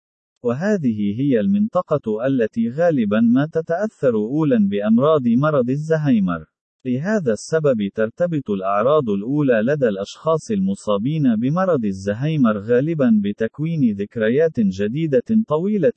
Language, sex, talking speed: Arabic, male, 100 wpm